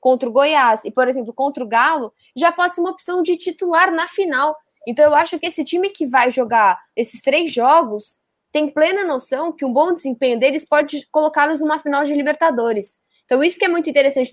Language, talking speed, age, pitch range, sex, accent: Portuguese, 210 wpm, 10-29, 250-315 Hz, female, Brazilian